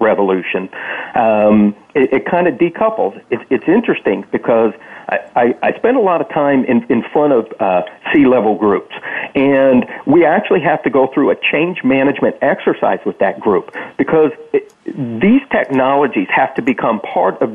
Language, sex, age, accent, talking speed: English, male, 50-69, American, 155 wpm